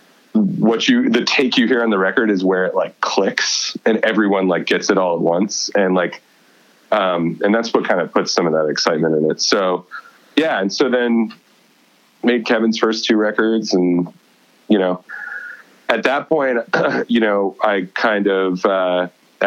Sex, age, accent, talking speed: male, 30-49, American, 185 wpm